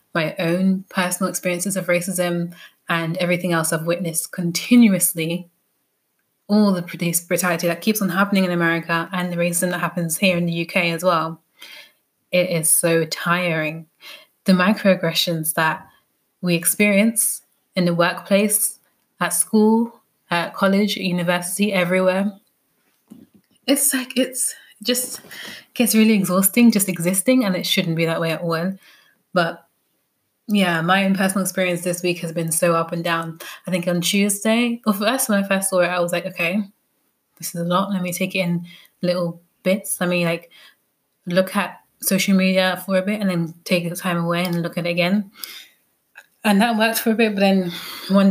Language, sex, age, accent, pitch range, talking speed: English, female, 20-39, British, 170-195 Hz, 170 wpm